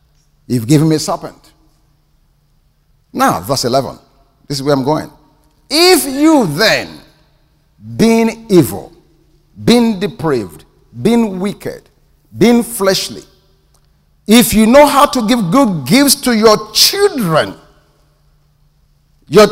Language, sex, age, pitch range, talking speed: English, male, 50-69, 145-210 Hz, 110 wpm